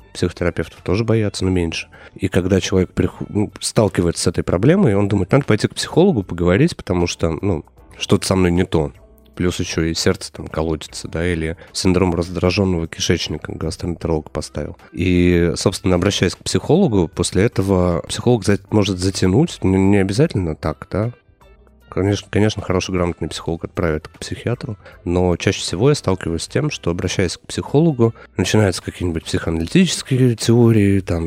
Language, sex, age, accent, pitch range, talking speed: Russian, male, 30-49, native, 85-105 Hz, 150 wpm